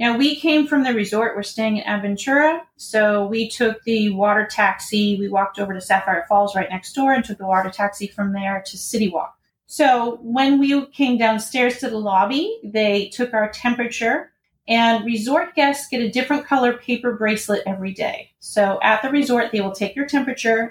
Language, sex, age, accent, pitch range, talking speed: English, female, 30-49, American, 205-250 Hz, 195 wpm